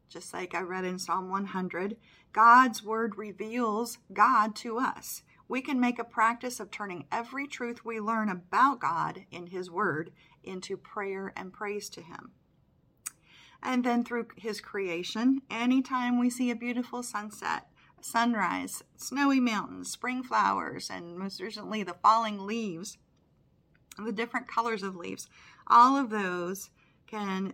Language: English